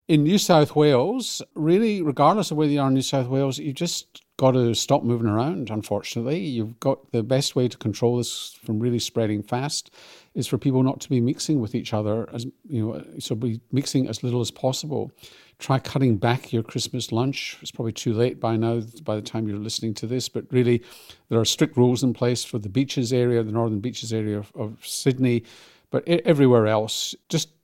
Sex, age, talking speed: male, 50-69, 210 wpm